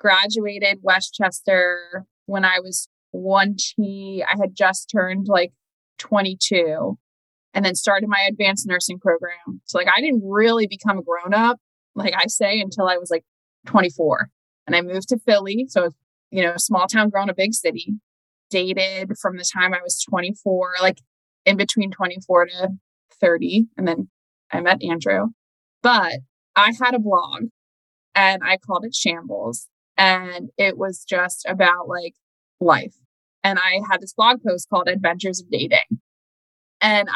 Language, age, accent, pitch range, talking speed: English, 20-39, American, 180-215 Hz, 155 wpm